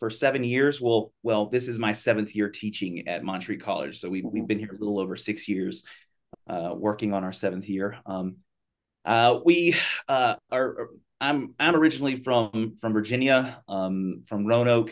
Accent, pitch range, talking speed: American, 100-125 Hz, 175 wpm